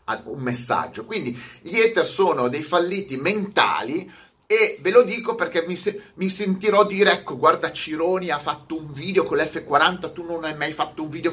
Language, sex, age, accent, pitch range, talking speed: Italian, male, 30-49, native, 160-225 Hz, 185 wpm